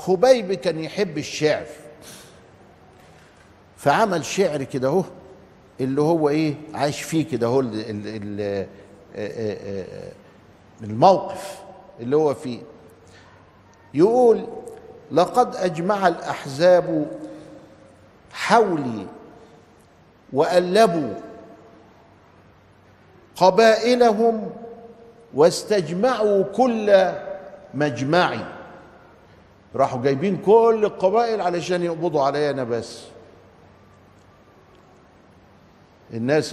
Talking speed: 65 wpm